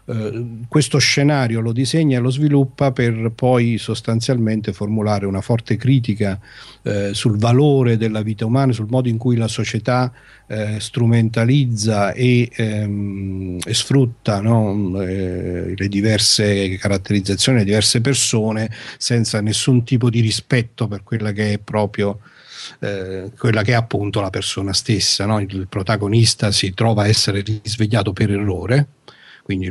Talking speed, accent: 120 wpm, native